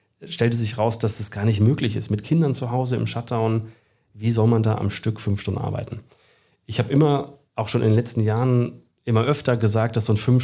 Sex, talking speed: male, 230 wpm